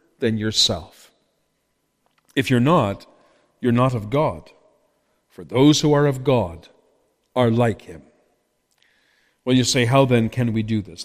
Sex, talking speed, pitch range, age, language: male, 145 wpm, 115-155 Hz, 50-69, English